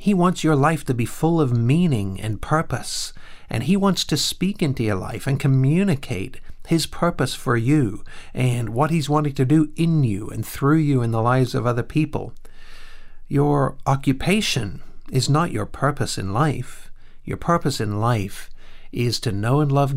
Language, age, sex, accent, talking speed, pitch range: English, 50-69, male, American, 175 wpm, 110-140 Hz